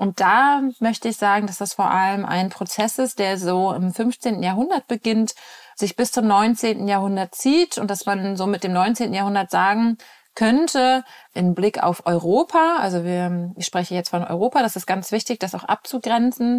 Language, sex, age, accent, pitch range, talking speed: German, female, 30-49, German, 190-235 Hz, 185 wpm